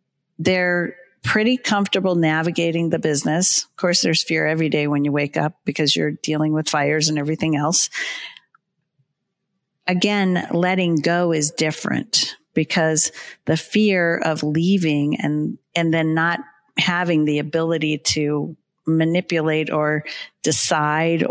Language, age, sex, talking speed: English, 50-69, female, 125 wpm